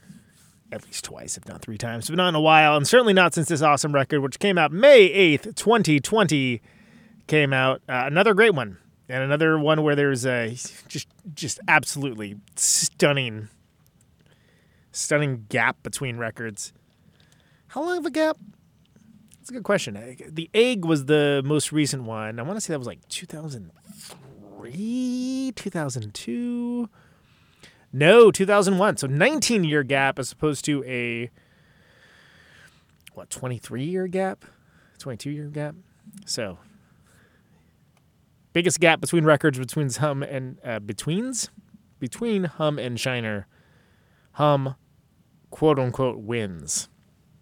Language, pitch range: English, 130-190 Hz